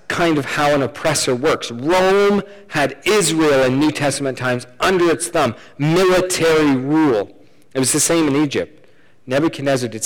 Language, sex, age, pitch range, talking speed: English, male, 40-59, 130-180 Hz, 155 wpm